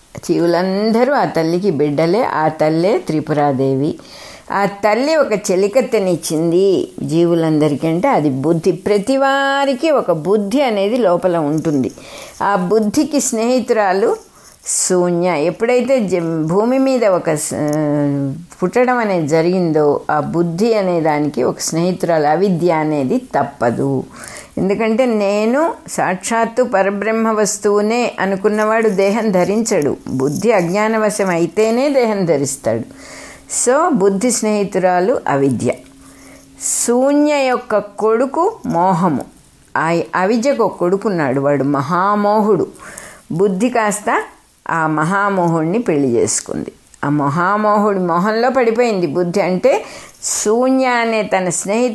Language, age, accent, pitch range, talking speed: English, 60-79, Indian, 165-230 Hz, 75 wpm